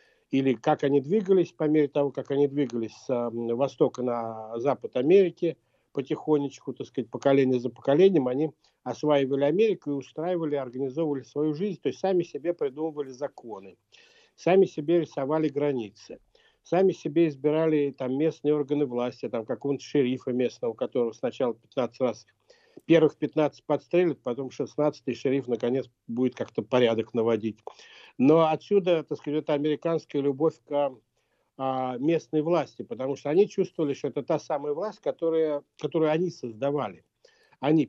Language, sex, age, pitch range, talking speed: Russian, male, 60-79, 130-165 Hz, 140 wpm